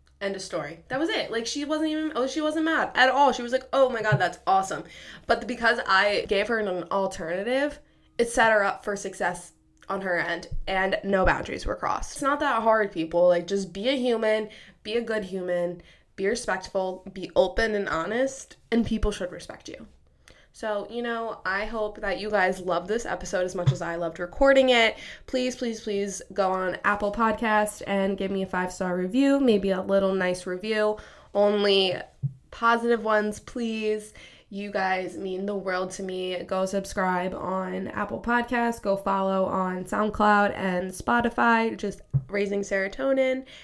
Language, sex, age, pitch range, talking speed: English, female, 20-39, 185-225 Hz, 180 wpm